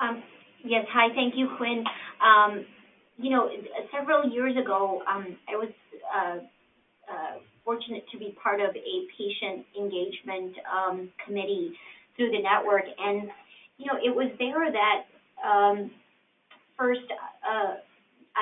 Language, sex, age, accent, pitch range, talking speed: English, female, 30-49, American, 200-240 Hz, 130 wpm